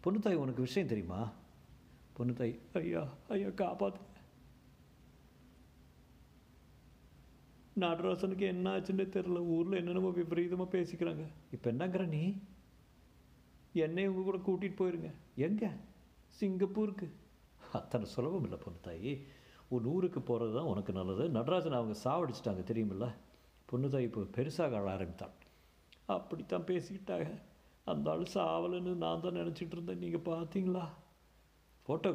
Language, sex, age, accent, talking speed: Tamil, male, 60-79, native, 105 wpm